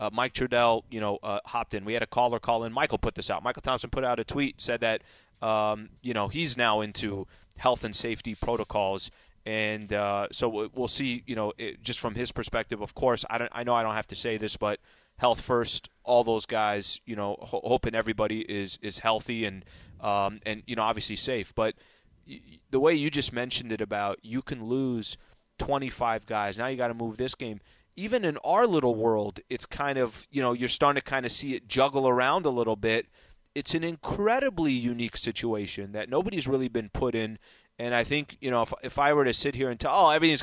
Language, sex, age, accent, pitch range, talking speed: English, male, 30-49, American, 110-135 Hz, 225 wpm